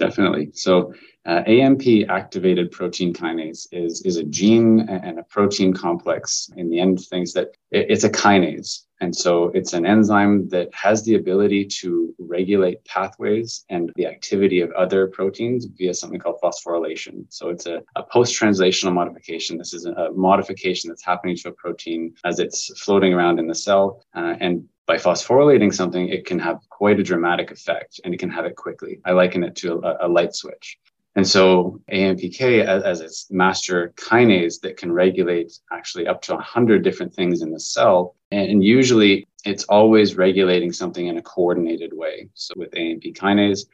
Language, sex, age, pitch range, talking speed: English, male, 20-39, 90-100 Hz, 175 wpm